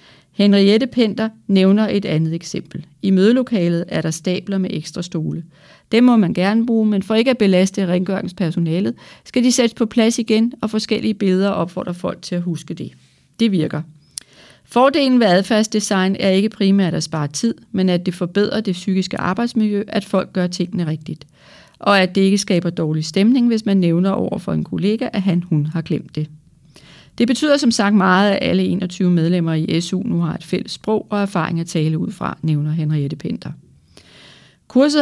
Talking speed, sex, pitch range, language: 185 wpm, female, 170-210 Hz, Danish